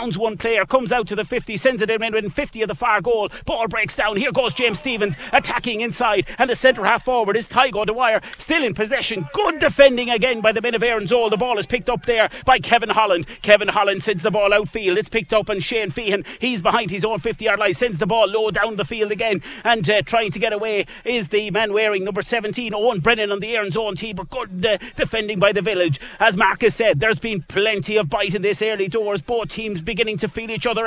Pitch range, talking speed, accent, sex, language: 200-235 Hz, 240 wpm, British, male, English